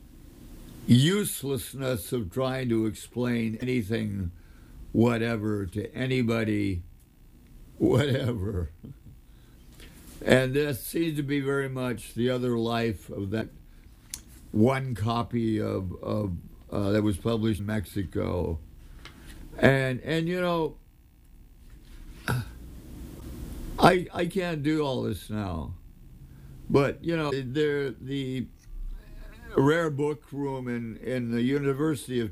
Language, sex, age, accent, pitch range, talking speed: English, male, 60-79, American, 100-130 Hz, 105 wpm